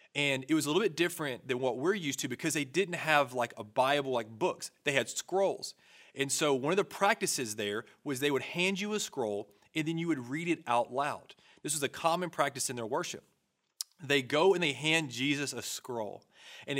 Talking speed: 225 wpm